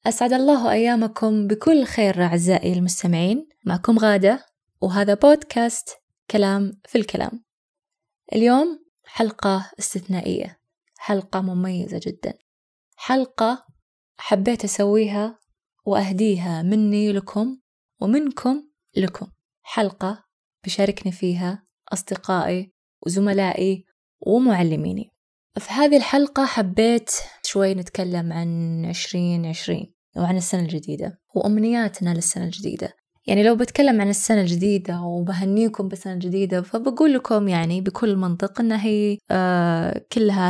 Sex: female